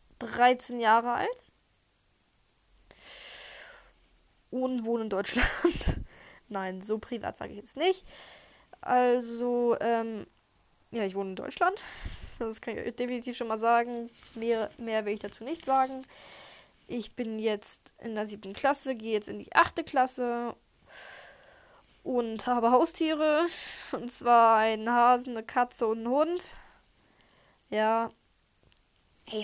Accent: German